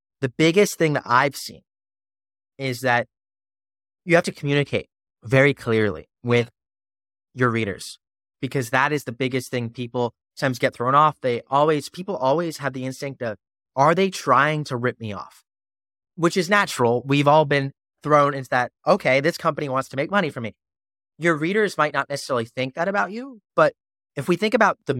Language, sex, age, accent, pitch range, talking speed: English, male, 30-49, American, 110-150 Hz, 180 wpm